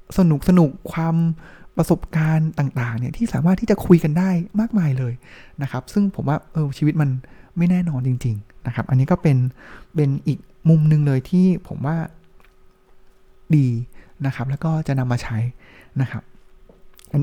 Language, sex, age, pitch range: Thai, male, 20-39, 135-175 Hz